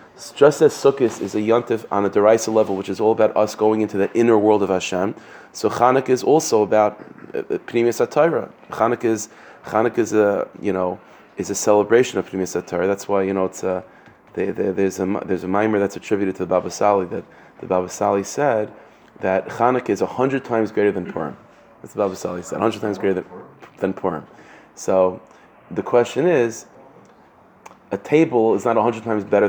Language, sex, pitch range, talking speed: English, male, 100-120 Hz, 195 wpm